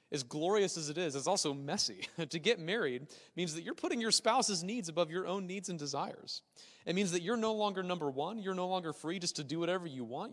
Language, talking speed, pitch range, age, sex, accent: English, 245 wpm, 145-215 Hz, 30-49, male, American